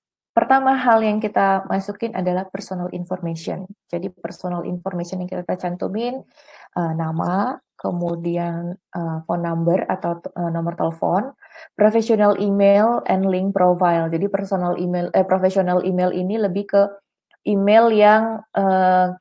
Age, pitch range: 20-39, 170-200 Hz